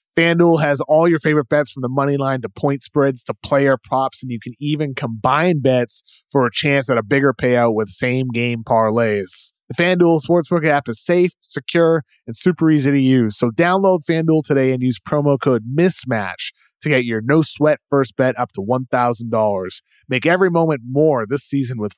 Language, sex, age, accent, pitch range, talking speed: English, male, 30-49, American, 125-155 Hz, 190 wpm